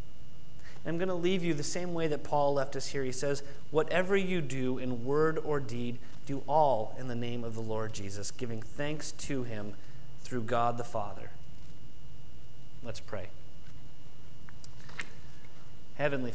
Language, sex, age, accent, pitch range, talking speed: English, male, 30-49, American, 120-140 Hz, 155 wpm